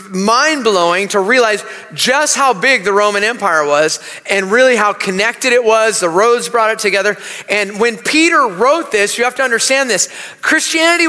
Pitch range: 200-255 Hz